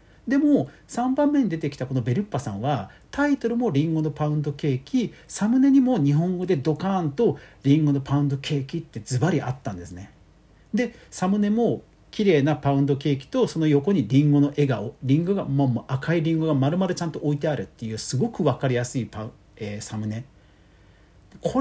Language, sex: Japanese, male